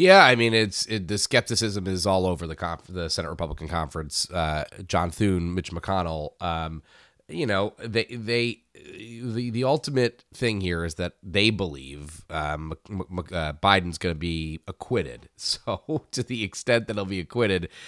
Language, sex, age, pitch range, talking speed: English, male, 30-49, 85-105 Hz, 175 wpm